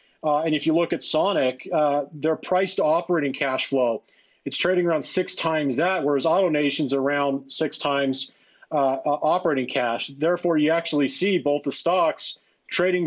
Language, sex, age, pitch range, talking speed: English, male, 40-59, 145-170 Hz, 170 wpm